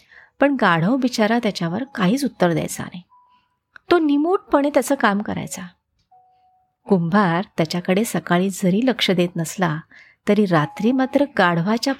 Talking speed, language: 120 wpm, Marathi